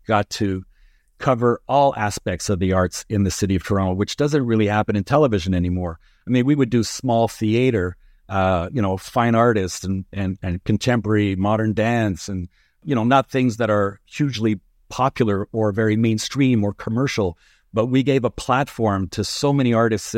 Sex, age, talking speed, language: male, 50-69, 180 wpm, English